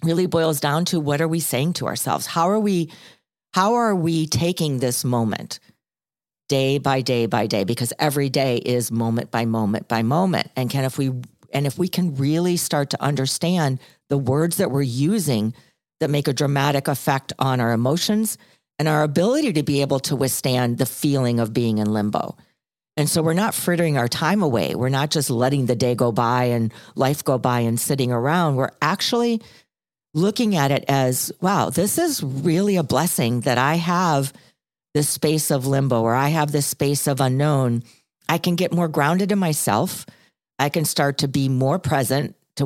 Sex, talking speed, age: female, 190 wpm, 40-59